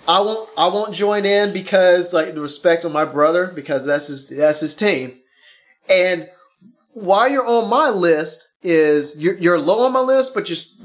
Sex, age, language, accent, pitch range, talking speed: male, 30-49, English, American, 170-260 Hz, 190 wpm